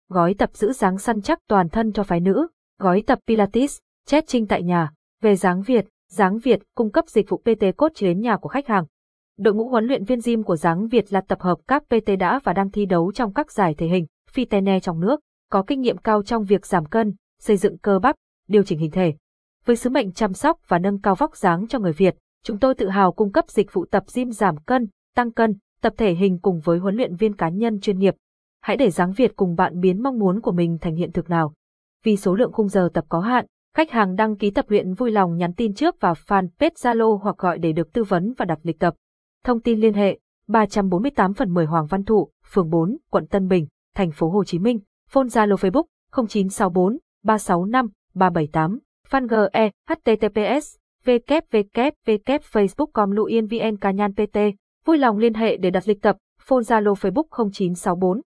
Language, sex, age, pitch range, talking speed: Vietnamese, female, 20-39, 185-235 Hz, 210 wpm